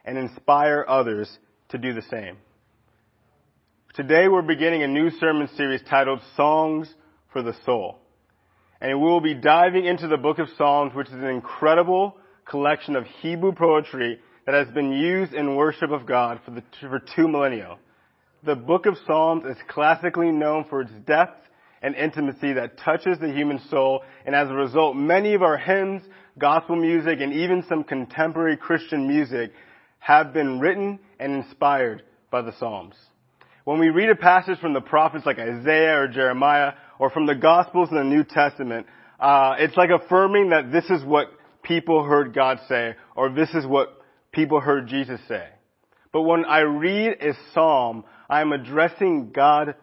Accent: American